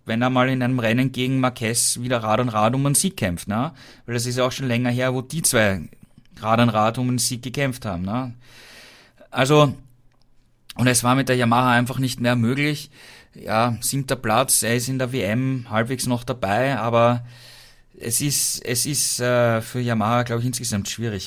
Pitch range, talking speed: 115-130 Hz, 195 wpm